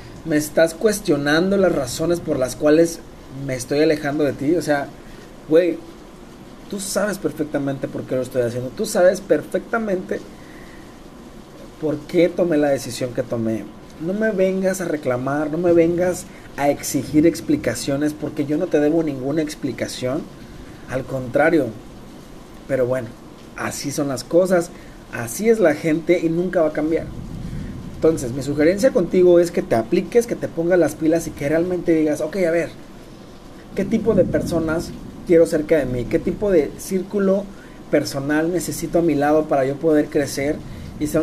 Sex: male